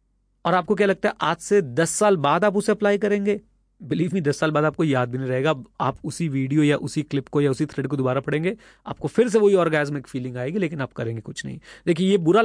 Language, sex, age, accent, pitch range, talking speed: Hindi, male, 30-49, native, 135-185 Hz, 250 wpm